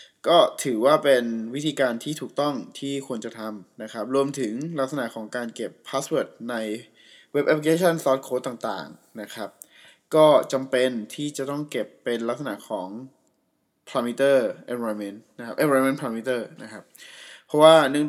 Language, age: Thai, 20-39